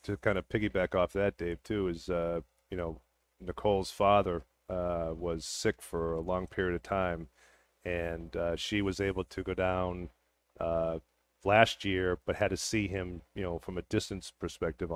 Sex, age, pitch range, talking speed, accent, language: male, 40-59, 85-95 Hz, 180 wpm, American, English